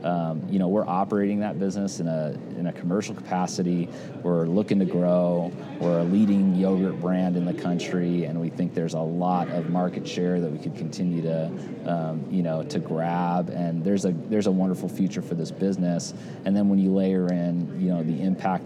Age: 30-49